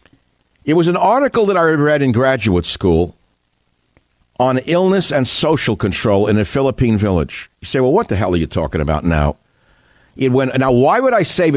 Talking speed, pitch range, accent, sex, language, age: 190 wpm, 100-140 Hz, American, male, English, 60-79